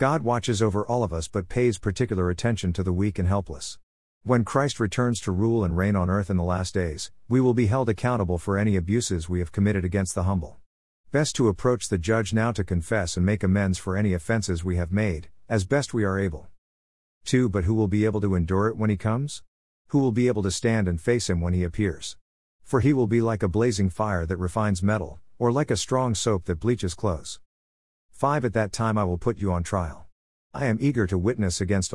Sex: male